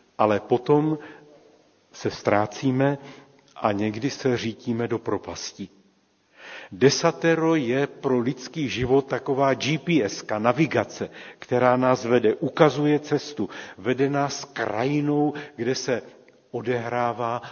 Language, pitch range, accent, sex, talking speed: Czech, 115-140 Hz, native, male, 100 wpm